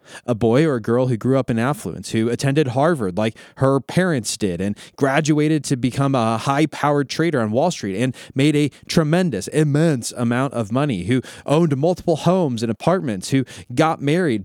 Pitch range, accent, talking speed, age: 105-140 Hz, American, 185 wpm, 20-39